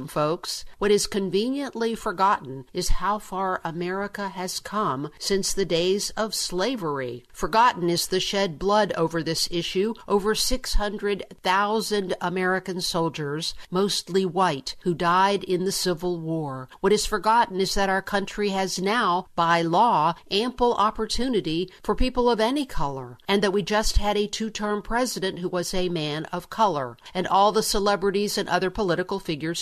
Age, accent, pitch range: 50-69, American, 170-210 Hz